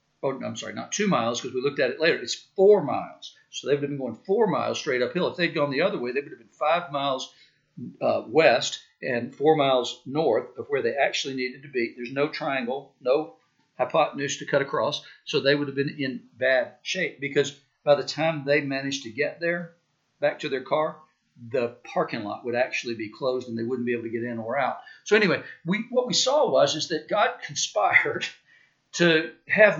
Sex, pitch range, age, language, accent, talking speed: male, 130-170 Hz, 50-69, English, American, 215 wpm